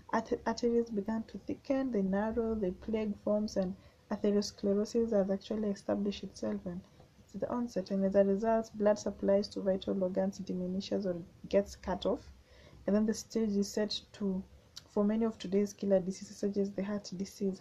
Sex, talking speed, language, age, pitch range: female, 175 wpm, English, 20-39, 195-230 Hz